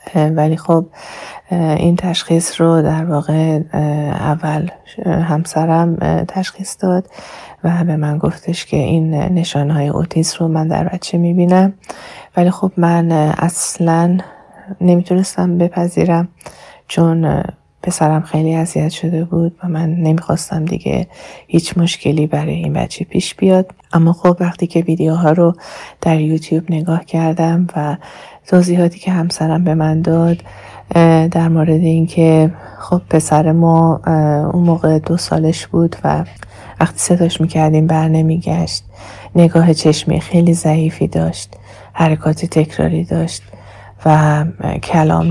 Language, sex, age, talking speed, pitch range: Persian, female, 30-49, 120 wpm, 155-175 Hz